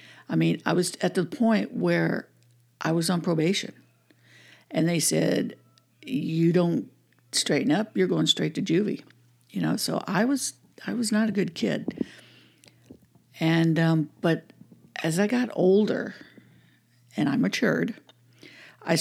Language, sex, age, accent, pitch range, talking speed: English, female, 60-79, American, 125-175 Hz, 145 wpm